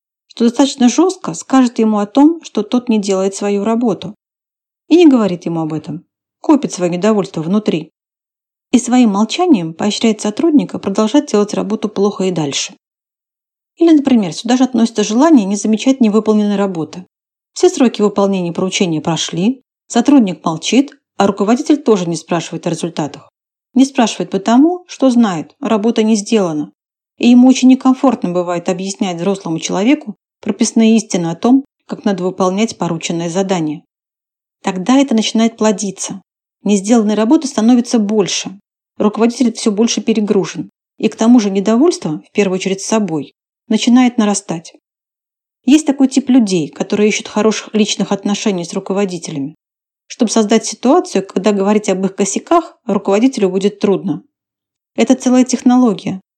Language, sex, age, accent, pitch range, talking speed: Russian, female, 40-59, native, 190-245 Hz, 140 wpm